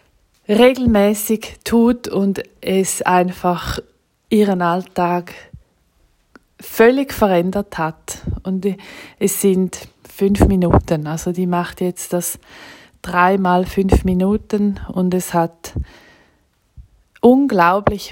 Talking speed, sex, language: 90 wpm, female, German